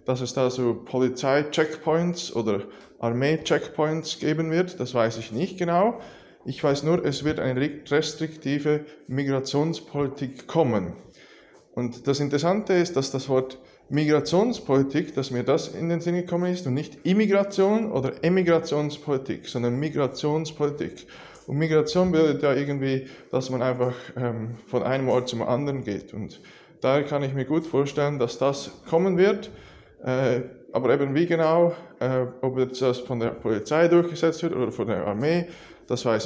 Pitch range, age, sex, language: 130-165 Hz, 20-39, male, English